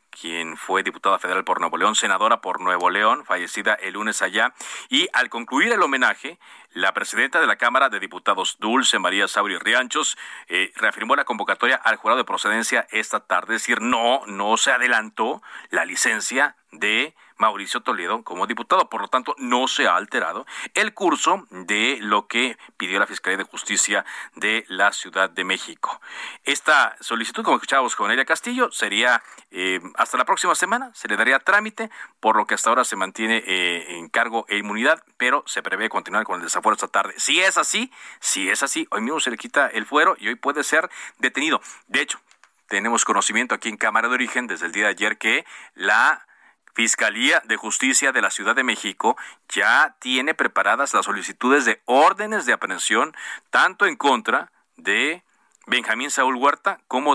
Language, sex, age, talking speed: Spanish, male, 40-59, 185 wpm